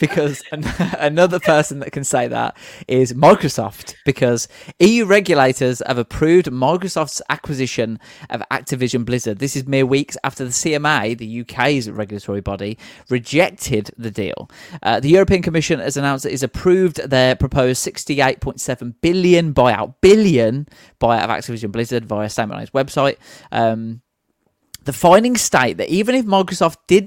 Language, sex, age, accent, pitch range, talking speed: English, male, 20-39, British, 120-160 Hz, 140 wpm